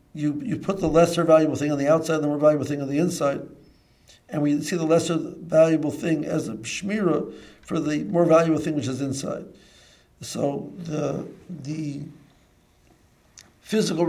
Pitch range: 140-160 Hz